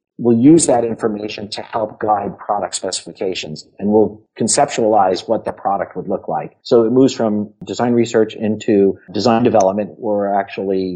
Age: 50-69